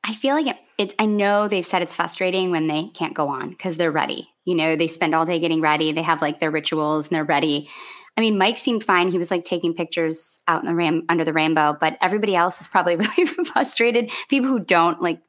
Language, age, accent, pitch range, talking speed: English, 20-39, American, 155-200 Hz, 245 wpm